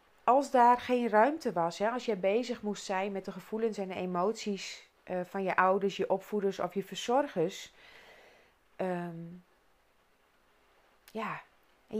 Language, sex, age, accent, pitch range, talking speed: Dutch, female, 40-59, Dutch, 195-245 Hz, 145 wpm